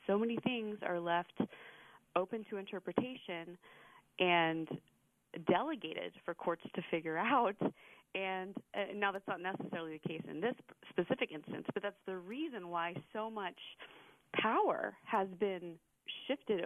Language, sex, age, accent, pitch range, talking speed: English, female, 30-49, American, 170-210 Hz, 135 wpm